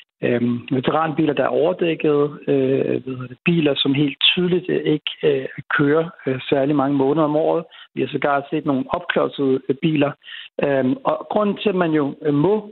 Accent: native